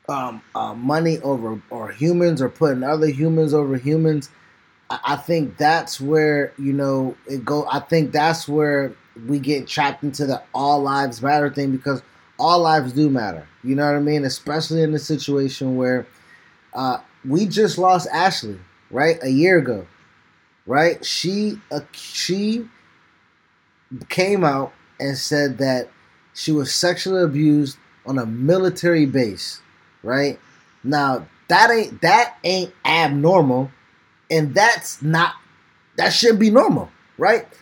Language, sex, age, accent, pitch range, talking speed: English, male, 20-39, American, 140-175 Hz, 145 wpm